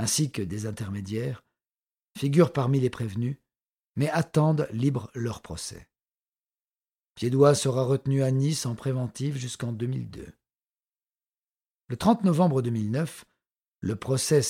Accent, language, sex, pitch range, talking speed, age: French, French, male, 115-140 Hz, 115 wpm, 50-69